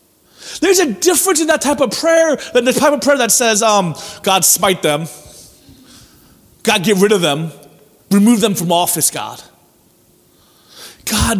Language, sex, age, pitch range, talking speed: English, male, 30-49, 165-250 Hz, 160 wpm